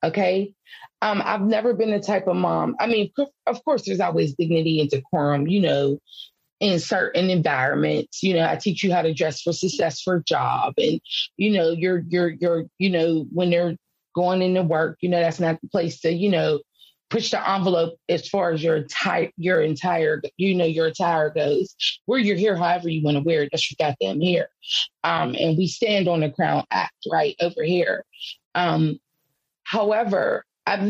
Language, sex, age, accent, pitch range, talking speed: English, female, 30-49, American, 170-220 Hz, 195 wpm